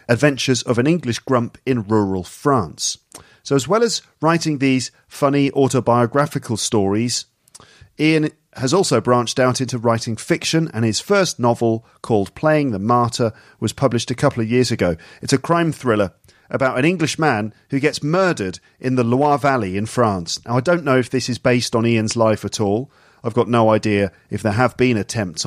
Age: 40-59